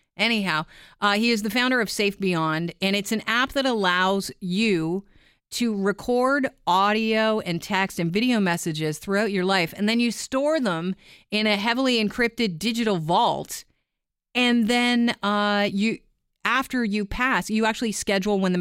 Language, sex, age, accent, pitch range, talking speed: English, female, 40-59, American, 175-220 Hz, 160 wpm